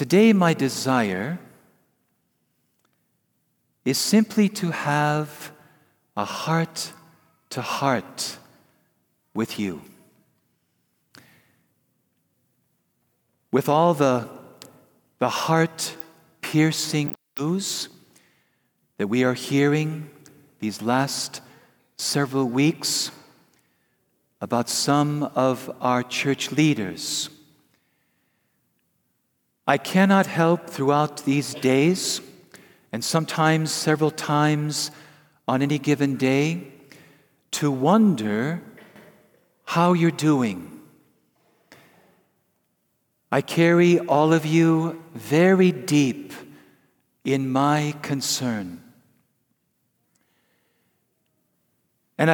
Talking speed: 70 wpm